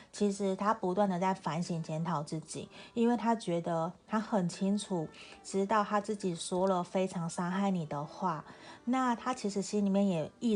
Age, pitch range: 30-49, 170-210 Hz